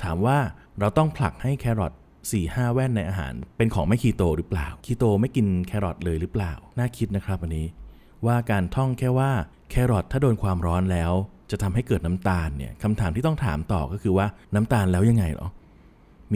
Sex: male